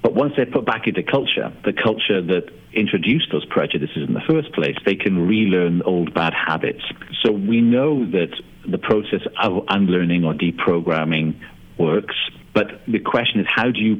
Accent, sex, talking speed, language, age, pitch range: British, male, 175 wpm, English, 50-69, 85-110 Hz